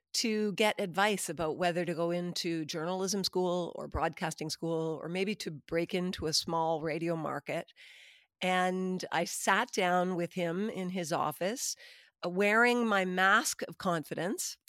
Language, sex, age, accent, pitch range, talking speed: English, female, 50-69, American, 170-200 Hz, 145 wpm